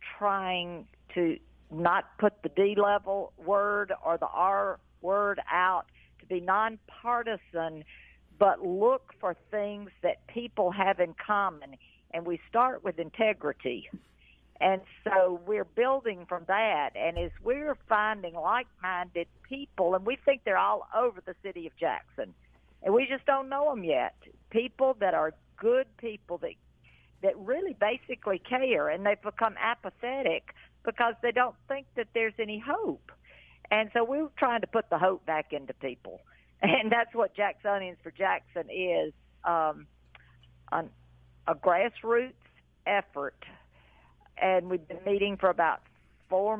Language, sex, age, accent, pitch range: Japanese, female, 50-69, American, 160-225 Hz